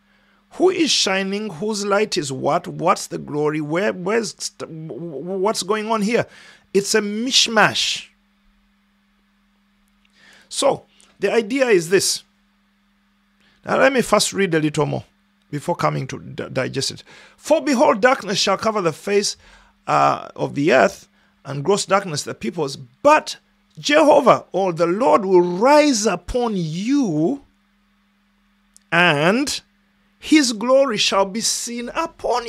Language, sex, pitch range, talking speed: English, male, 195-245 Hz, 125 wpm